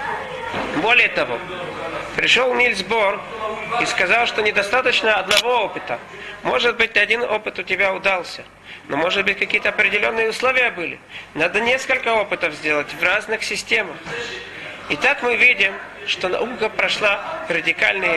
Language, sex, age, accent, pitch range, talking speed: Russian, male, 40-59, native, 205-255 Hz, 130 wpm